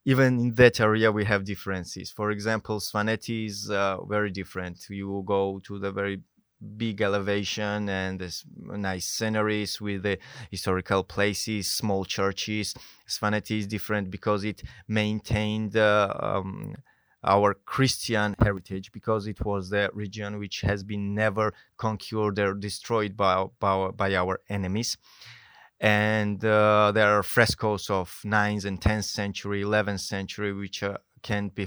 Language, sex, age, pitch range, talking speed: English, male, 20-39, 100-110 Hz, 145 wpm